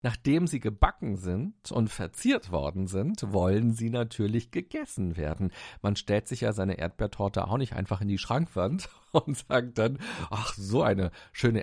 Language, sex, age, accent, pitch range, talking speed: German, male, 50-69, German, 105-140 Hz, 165 wpm